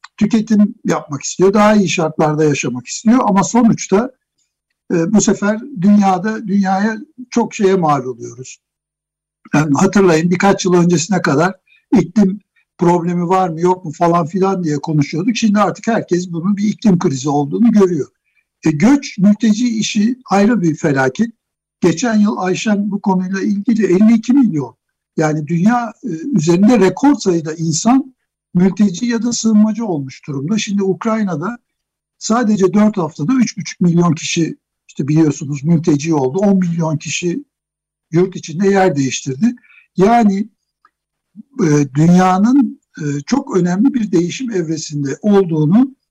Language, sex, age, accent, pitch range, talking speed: Turkish, male, 60-79, native, 160-220 Hz, 130 wpm